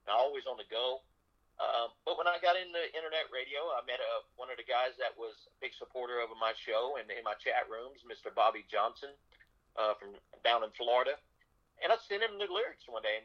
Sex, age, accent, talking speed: male, 50-69, American, 220 wpm